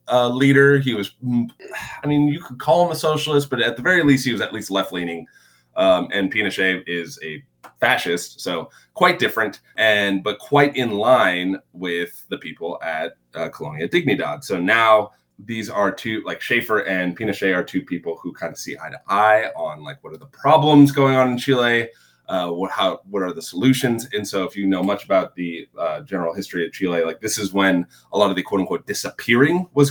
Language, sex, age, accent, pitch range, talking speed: English, male, 20-39, American, 95-135 Hz, 205 wpm